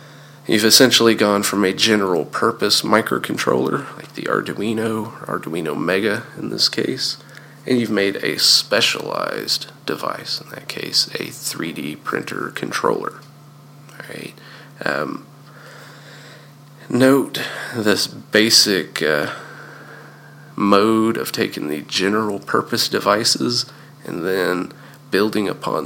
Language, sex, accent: English, male, American